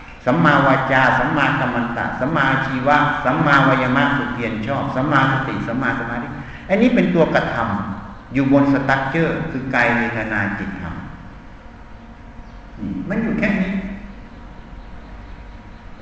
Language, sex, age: Thai, male, 60-79